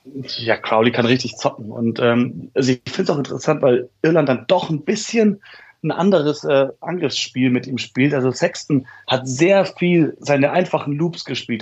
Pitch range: 125-145 Hz